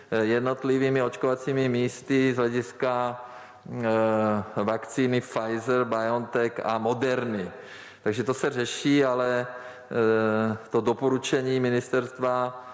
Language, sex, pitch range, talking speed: Czech, male, 105-120 Hz, 95 wpm